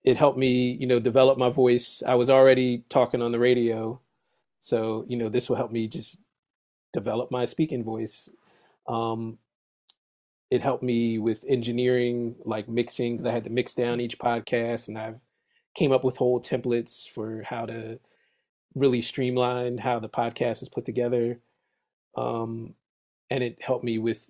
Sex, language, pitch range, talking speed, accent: male, English, 115-125 Hz, 170 wpm, American